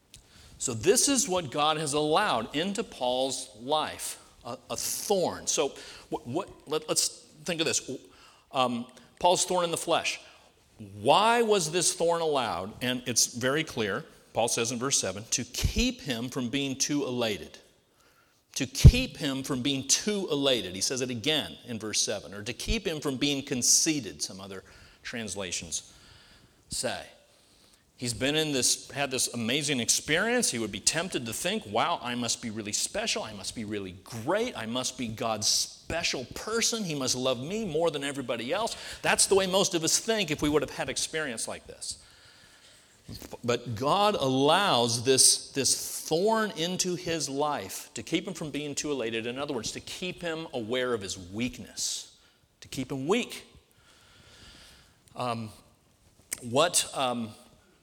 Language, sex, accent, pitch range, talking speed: English, male, American, 120-160 Hz, 165 wpm